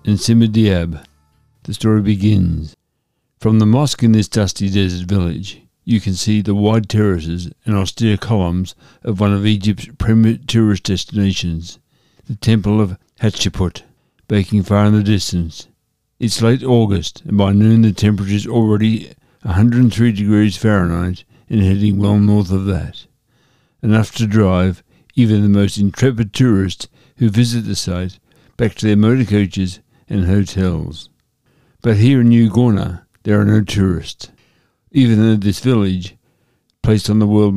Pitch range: 100-115 Hz